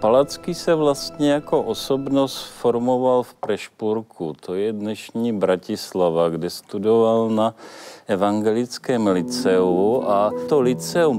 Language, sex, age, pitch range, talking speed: Czech, male, 50-69, 105-135 Hz, 105 wpm